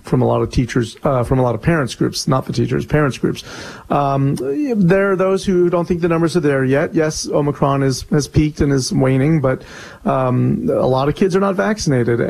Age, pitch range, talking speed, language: 40-59, 130-160 Hz, 225 wpm, English